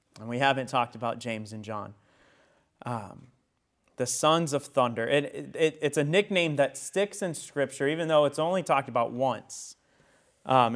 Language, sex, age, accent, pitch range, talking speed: English, male, 30-49, American, 135-180 Hz, 155 wpm